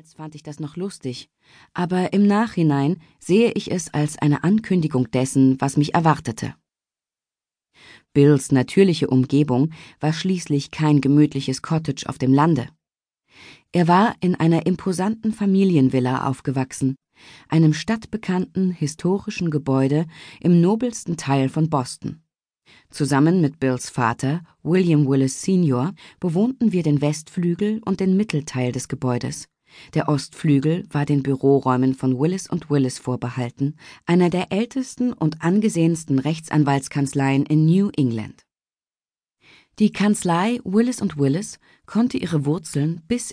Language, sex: German, female